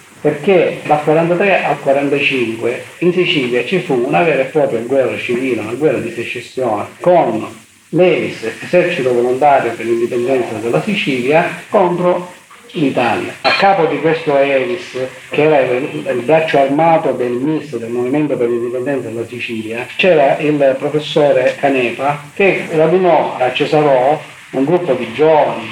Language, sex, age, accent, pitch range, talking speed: Italian, male, 50-69, native, 125-170 Hz, 140 wpm